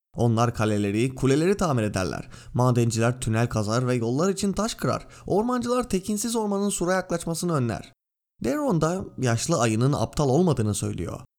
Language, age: Turkish, 30-49